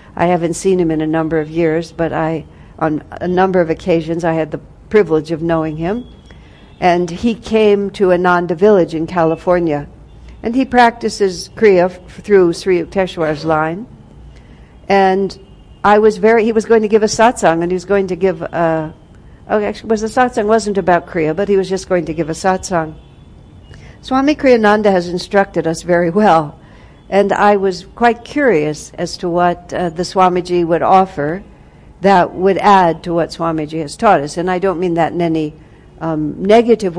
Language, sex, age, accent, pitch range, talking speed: English, female, 60-79, American, 165-205 Hz, 185 wpm